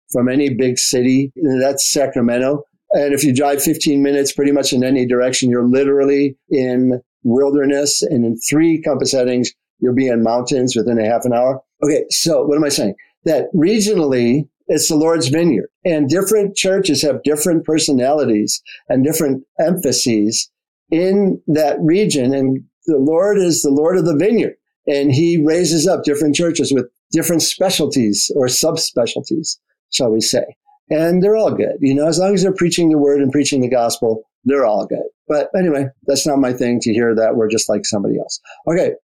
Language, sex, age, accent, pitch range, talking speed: English, male, 50-69, American, 125-160 Hz, 180 wpm